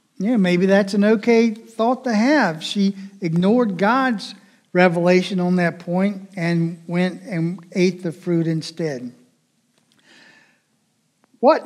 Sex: male